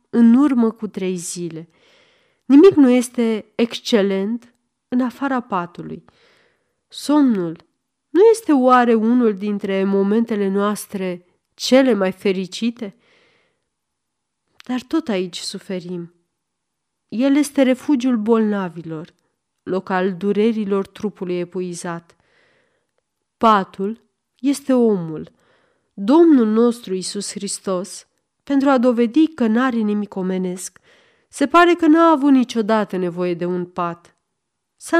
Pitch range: 190-270 Hz